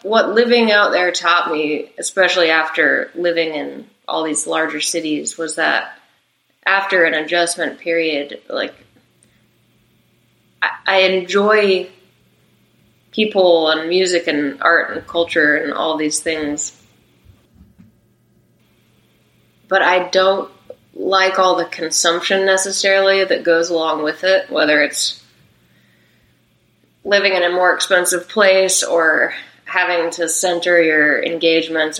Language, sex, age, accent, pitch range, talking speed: English, female, 20-39, American, 155-190 Hz, 115 wpm